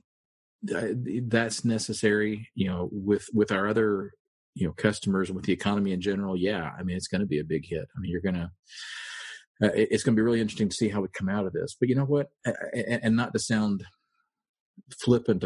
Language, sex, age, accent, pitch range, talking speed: English, male, 40-59, American, 90-110 Hz, 210 wpm